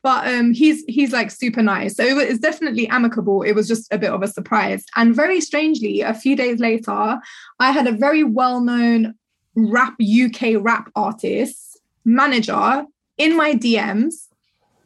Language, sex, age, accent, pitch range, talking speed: English, female, 20-39, British, 220-260 Hz, 170 wpm